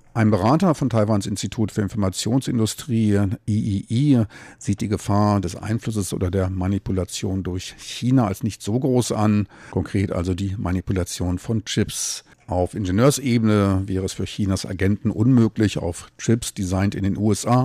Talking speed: 145 wpm